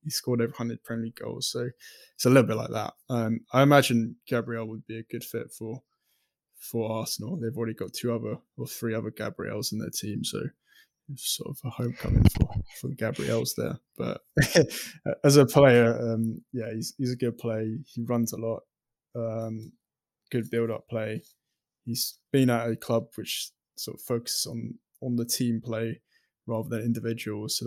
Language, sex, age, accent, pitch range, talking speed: English, male, 20-39, British, 115-130 Hz, 185 wpm